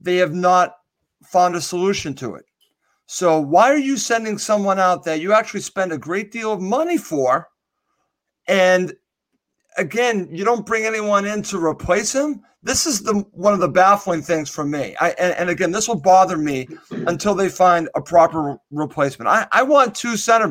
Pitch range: 160-205 Hz